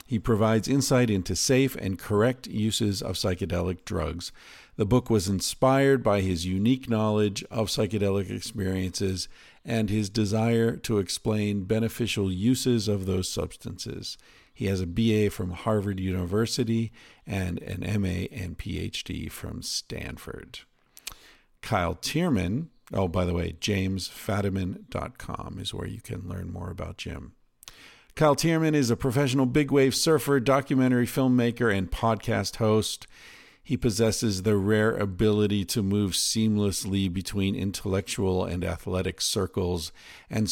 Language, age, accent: English, 50-69, American